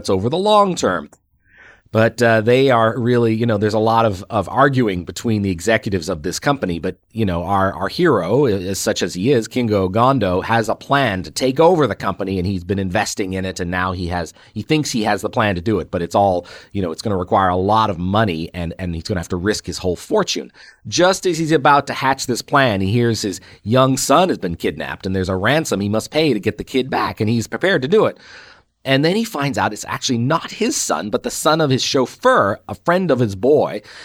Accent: American